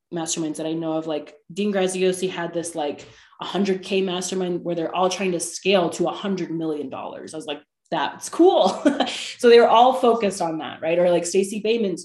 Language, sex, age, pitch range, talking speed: English, female, 20-39, 170-215 Hz, 210 wpm